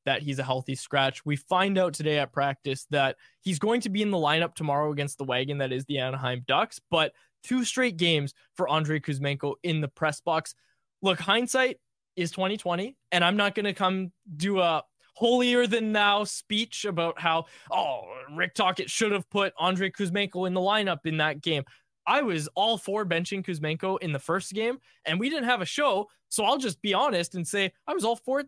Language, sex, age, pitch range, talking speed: English, male, 20-39, 150-205 Hz, 210 wpm